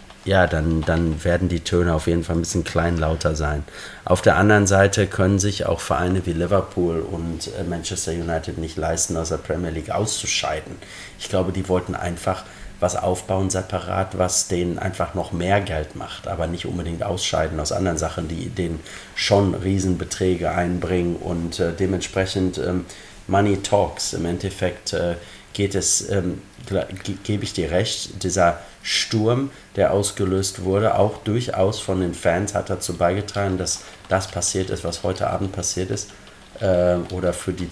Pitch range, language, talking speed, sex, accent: 85-95 Hz, German, 160 wpm, male, German